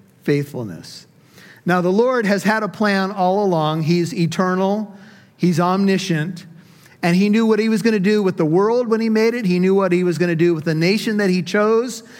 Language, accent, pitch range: English, American, 175-220 Hz